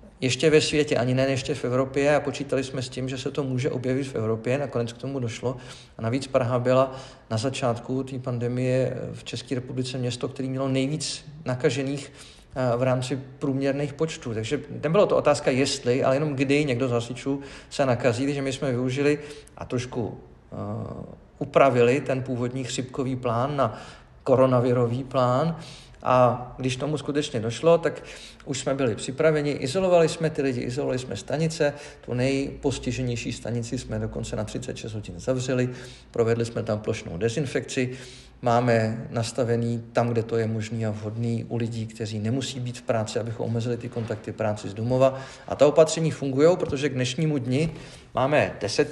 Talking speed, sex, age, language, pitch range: 165 wpm, male, 40-59, Czech, 120-140 Hz